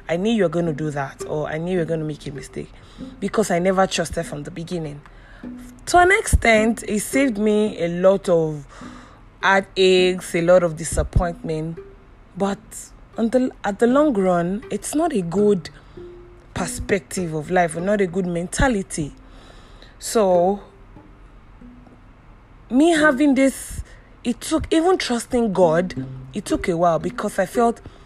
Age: 20-39